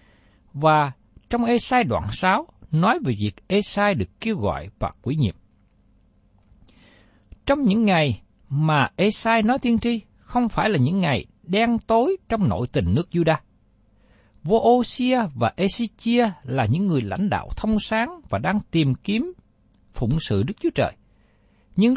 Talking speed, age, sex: 155 wpm, 60-79, male